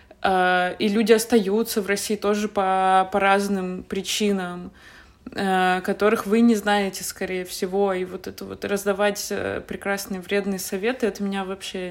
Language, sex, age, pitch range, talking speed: Russian, female, 20-39, 185-210 Hz, 135 wpm